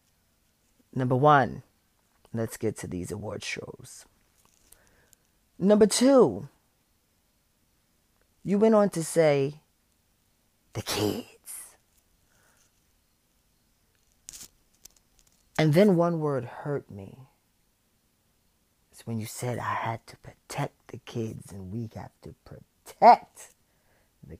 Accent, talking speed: American, 95 wpm